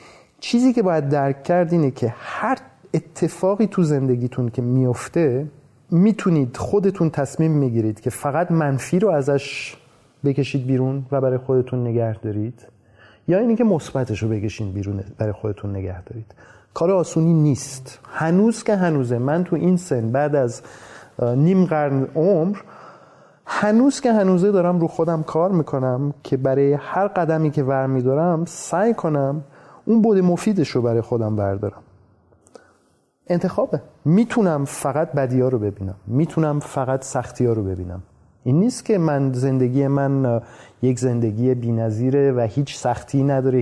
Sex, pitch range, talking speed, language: male, 125-170 Hz, 140 wpm, Persian